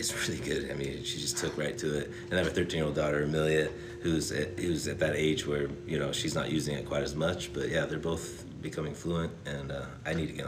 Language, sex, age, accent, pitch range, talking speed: English, male, 30-49, American, 75-90 Hz, 260 wpm